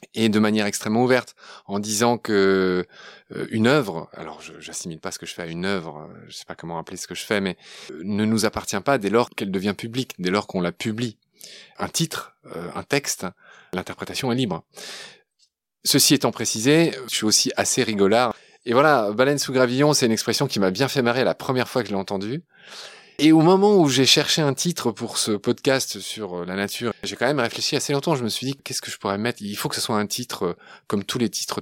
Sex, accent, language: male, French, French